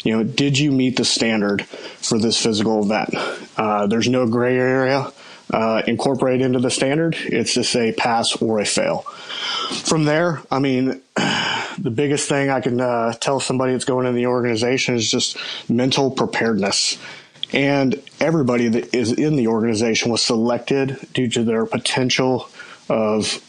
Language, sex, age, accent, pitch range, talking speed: English, male, 30-49, American, 110-130 Hz, 160 wpm